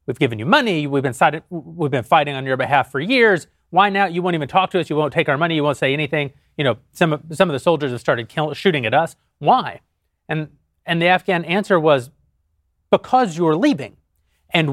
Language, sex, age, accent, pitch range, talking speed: English, male, 30-49, American, 135-185 Hz, 220 wpm